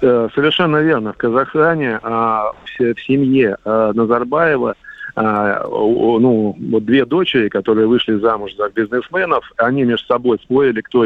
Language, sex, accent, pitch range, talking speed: Russian, male, native, 110-130 Hz, 110 wpm